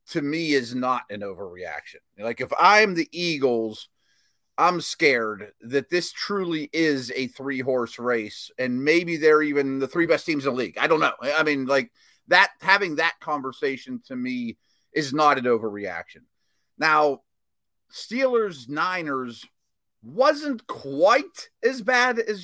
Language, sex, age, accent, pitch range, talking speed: English, male, 30-49, American, 125-195 Hz, 145 wpm